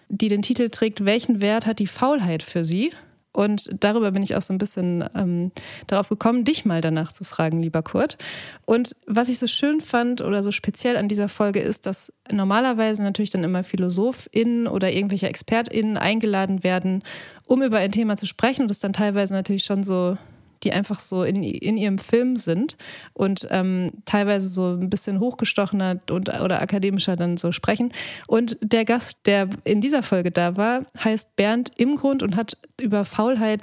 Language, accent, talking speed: German, German, 185 wpm